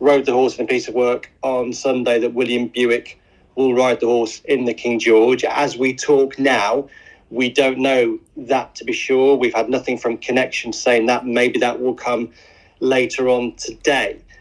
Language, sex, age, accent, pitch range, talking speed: English, male, 30-49, British, 120-145 Hz, 190 wpm